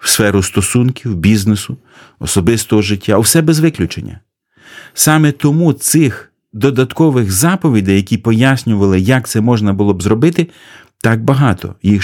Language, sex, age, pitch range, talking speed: Ukrainian, male, 40-59, 100-125 Hz, 125 wpm